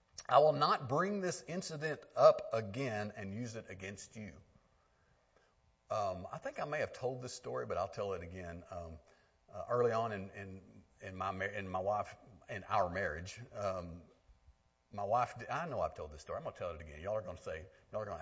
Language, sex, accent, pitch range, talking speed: English, male, American, 90-120 Hz, 215 wpm